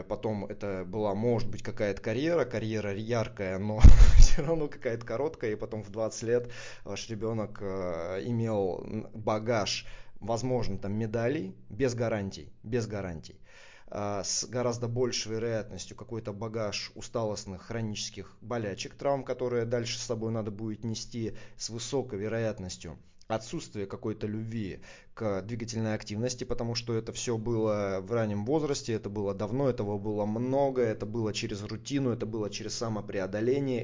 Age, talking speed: 20-39, 140 wpm